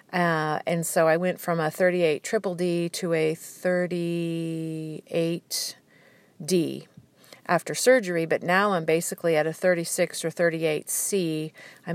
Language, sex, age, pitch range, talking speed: English, female, 50-69, 165-180 Hz, 135 wpm